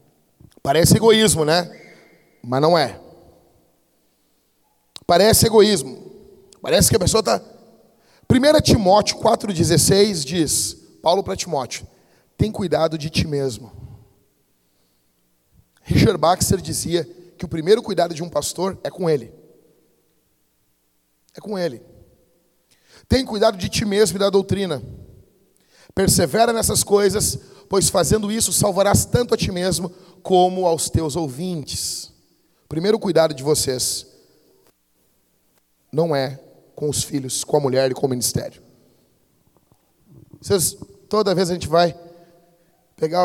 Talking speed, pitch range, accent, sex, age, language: 120 wpm, 140-195 Hz, Brazilian, male, 40-59, Portuguese